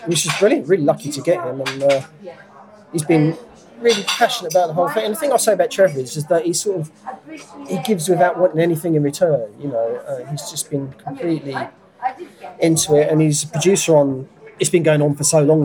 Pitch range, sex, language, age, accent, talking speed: 135-185 Hz, male, English, 30-49, British, 225 wpm